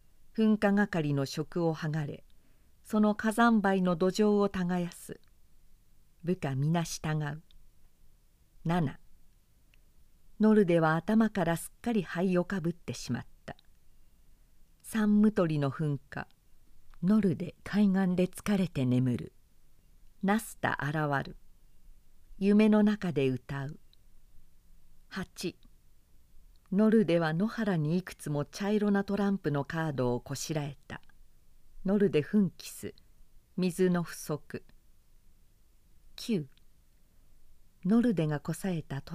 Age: 50-69